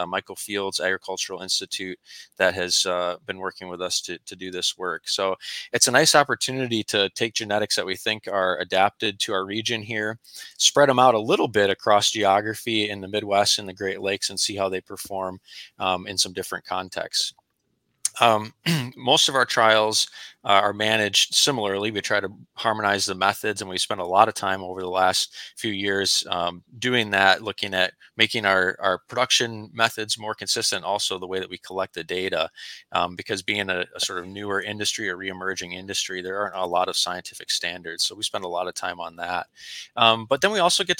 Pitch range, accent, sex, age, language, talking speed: 95-110 Hz, American, male, 20-39, English, 200 wpm